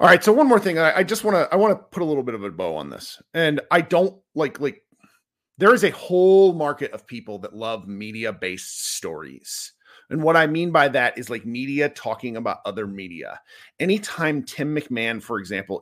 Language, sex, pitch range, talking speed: English, male, 140-200 Hz, 220 wpm